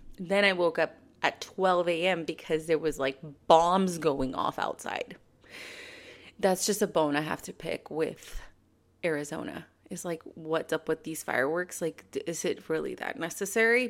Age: 30-49